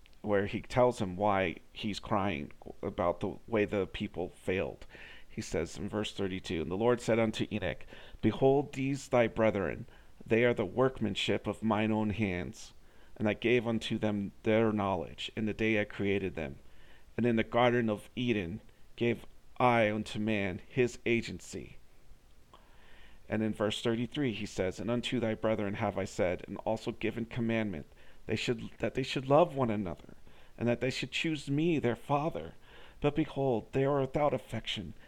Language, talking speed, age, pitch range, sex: English, 170 wpm, 40-59, 100-120 Hz, male